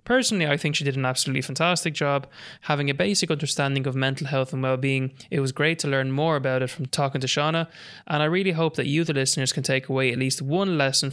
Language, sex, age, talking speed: English, male, 20-39, 245 wpm